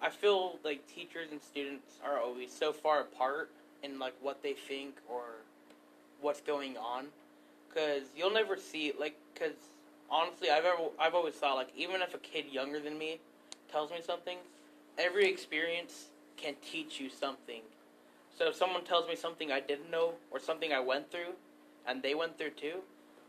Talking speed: 180 wpm